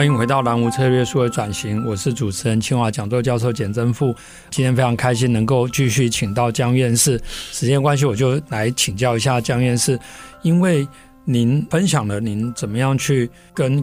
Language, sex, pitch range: Chinese, male, 115-140 Hz